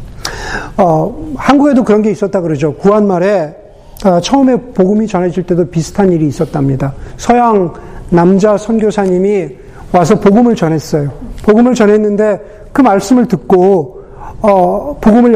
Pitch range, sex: 175-225 Hz, male